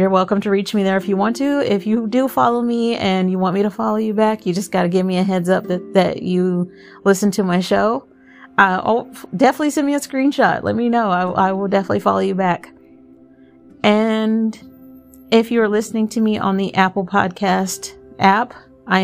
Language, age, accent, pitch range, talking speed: English, 30-49, American, 185-220 Hz, 215 wpm